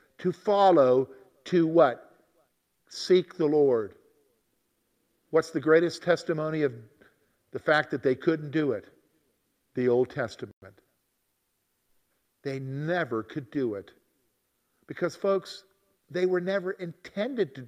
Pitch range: 160-235 Hz